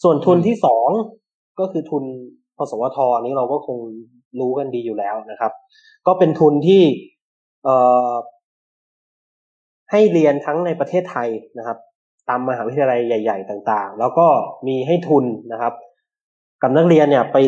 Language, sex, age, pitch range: Thai, male, 20-39, 125-170 Hz